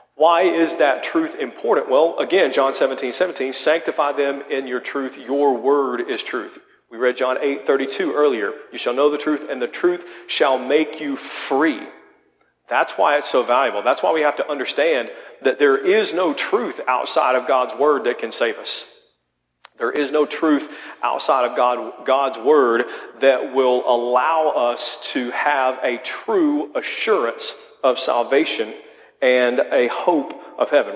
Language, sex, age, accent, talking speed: English, male, 40-59, American, 165 wpm